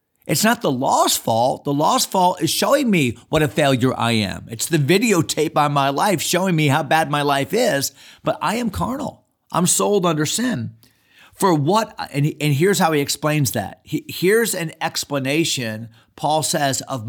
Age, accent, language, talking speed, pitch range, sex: 40-59, American, English, 185 wpm, 120-155 Hz, male